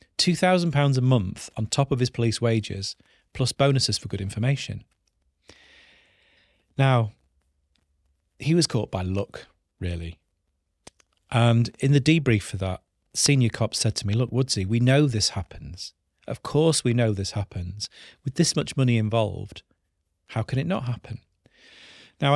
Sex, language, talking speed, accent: male, Finnish, 150 wpm, British